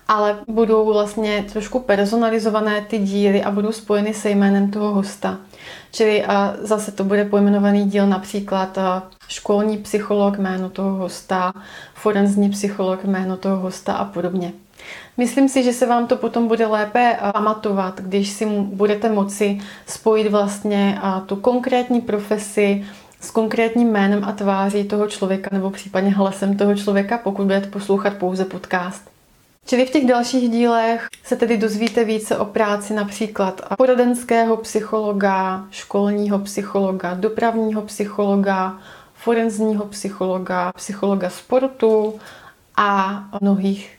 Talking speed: 125 wpm